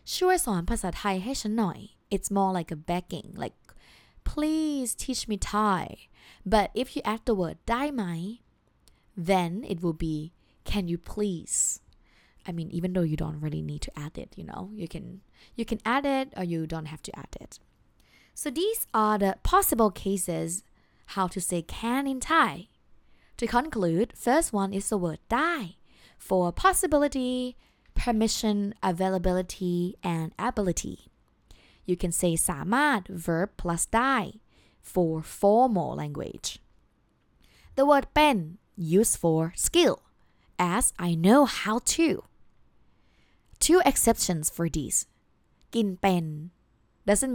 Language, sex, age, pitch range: Thai, female, 20-39, 175-230 Hz